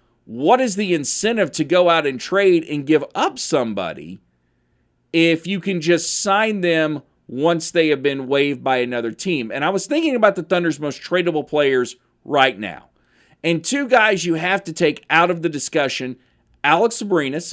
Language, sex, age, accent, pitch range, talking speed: English, male, 40-59, American, 125-165 Hz, 180 wpm